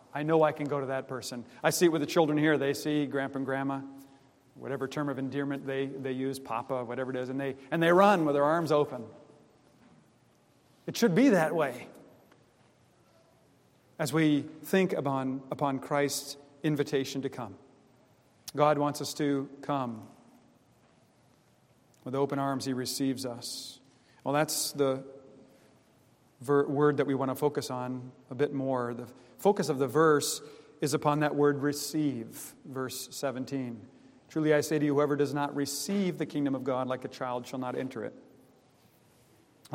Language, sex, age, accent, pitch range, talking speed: English, male, 40-59, American, 130-150 Hz, 170 wpm